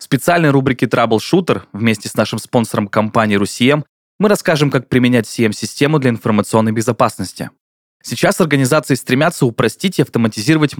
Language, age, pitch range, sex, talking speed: Russian, 20-39, 115-150 Hz, male, 135 wpm